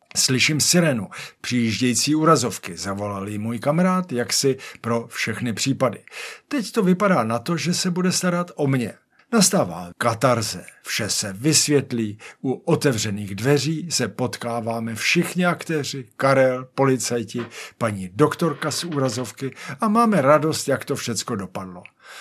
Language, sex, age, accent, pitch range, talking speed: Czech, male, 50-69, native, 120-165 Hz, 130 wpm